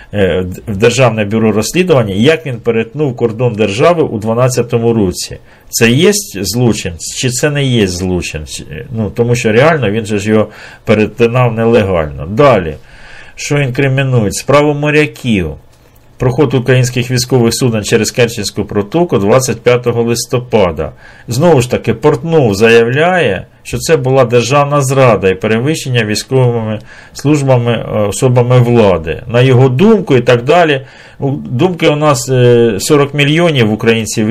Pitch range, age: 110-135 Hz, 50-69